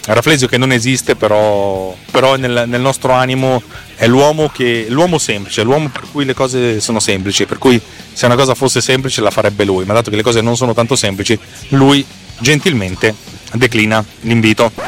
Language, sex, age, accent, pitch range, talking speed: Italian, male, 30-49, native, 115-160 Hz, 180 wpm